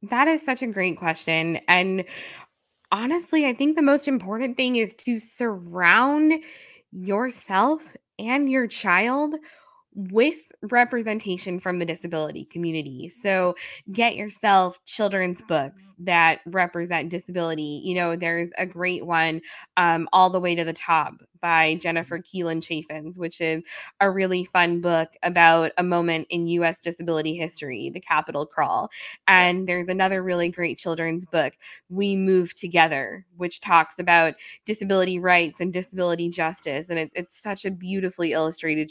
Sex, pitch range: female, 170-235 Hz